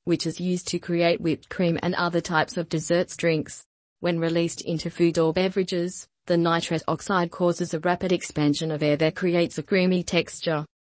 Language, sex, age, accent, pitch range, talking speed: English, female, 30-49, Australian, 160-180 Hz, 185 wpm